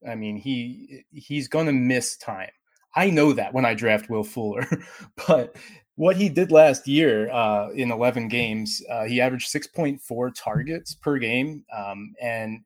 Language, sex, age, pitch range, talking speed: English, male, 20-39, 110-140 Hz, 165 wpm